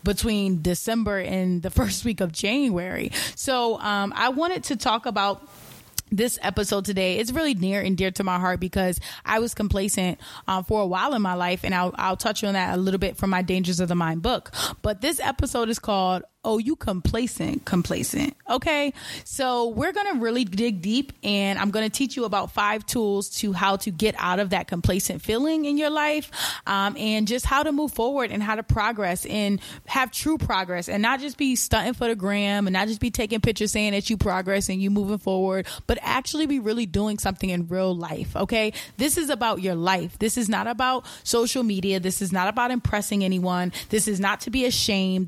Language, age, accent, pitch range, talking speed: English, 20-39, American, 190-235 Hz, 210 wpm